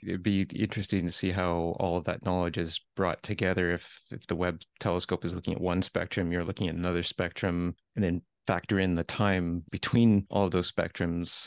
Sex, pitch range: male, 90-110 Hz